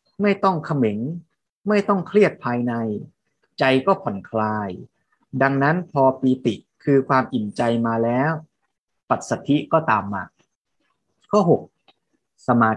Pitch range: 120-180 Hz